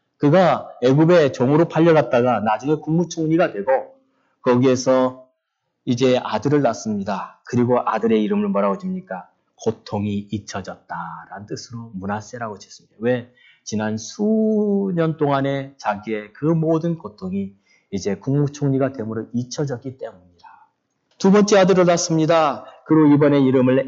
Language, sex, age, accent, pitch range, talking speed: English, male, 30-49, Korean, 110-165 Hz, 105 wpm